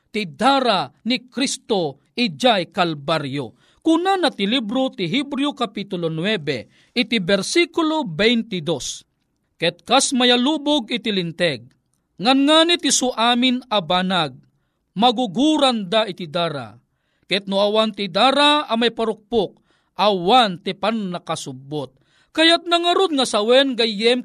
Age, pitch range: 40-59, 195-290 Hz